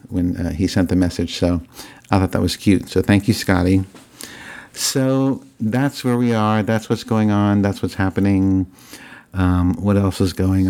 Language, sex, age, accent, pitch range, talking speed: English, male, 50-69, American, 90-105 Hz, 185 wpm